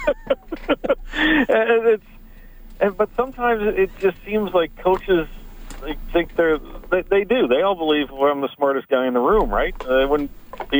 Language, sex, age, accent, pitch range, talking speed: English, male, 50-69, American, 120-160 Hz, 170 wpm